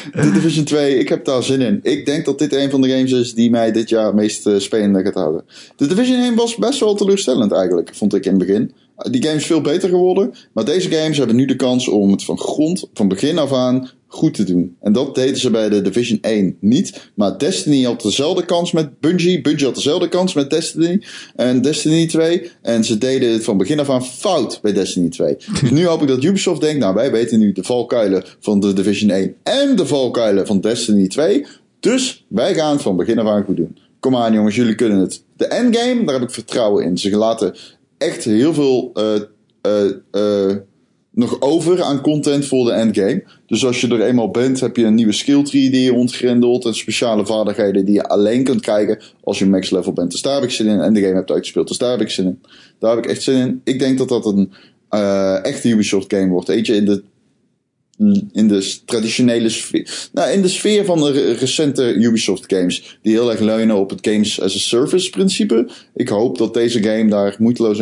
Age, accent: 20-39, Dutch